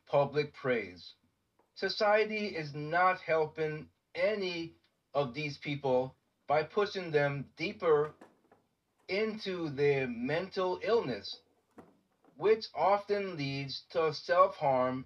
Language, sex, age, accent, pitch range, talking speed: English, male, 30-49, American, 140-185 Hz, 90 wpm